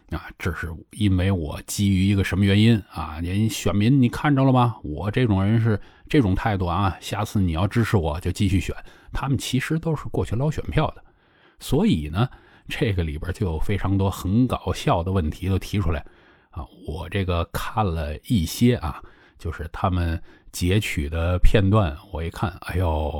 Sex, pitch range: male, 85-105 Hz